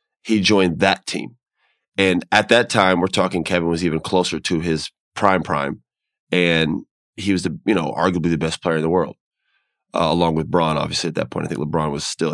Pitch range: 85-105 Hz